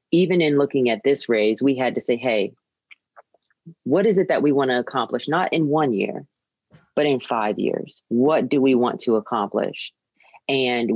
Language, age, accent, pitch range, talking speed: English, 30-49, American, 120-145 Hz, 185 wpm